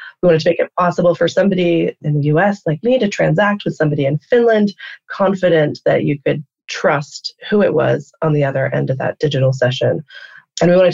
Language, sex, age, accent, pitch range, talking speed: English, female, 20-39, American, 145-175 Hz, 210 wpm